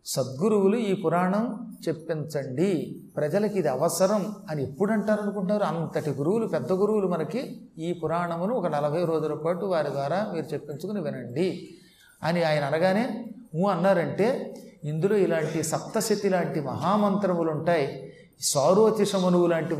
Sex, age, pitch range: male, 30-49, 165-205 Hz